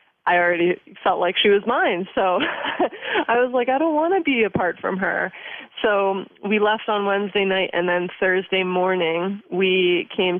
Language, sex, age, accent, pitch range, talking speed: English, female, 20-39, American, 170-200 Hz, 180 wpm